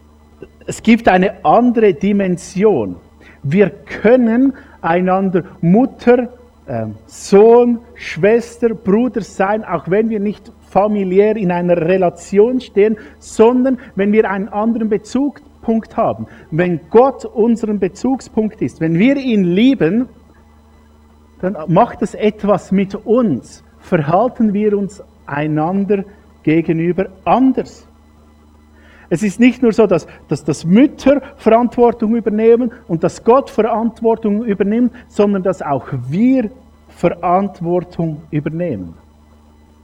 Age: 50-69